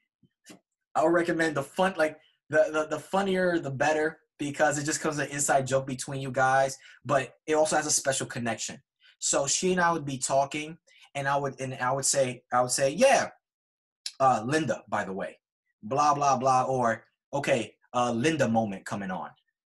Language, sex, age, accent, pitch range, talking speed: English, male, 20-39, American, 120-155 Hz, 190 wpm